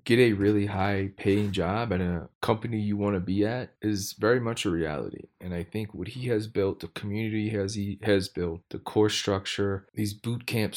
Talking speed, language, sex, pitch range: 205 wpm, English, male, 95-105 Hz